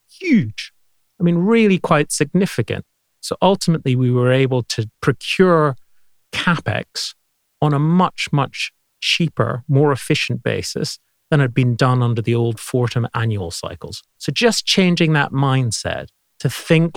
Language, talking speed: English, 140 wpm